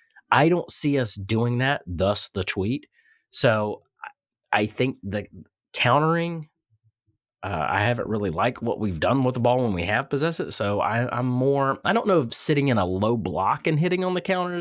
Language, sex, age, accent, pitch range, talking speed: English, male, 30-49, American, 95-125 Hz, 200 wpm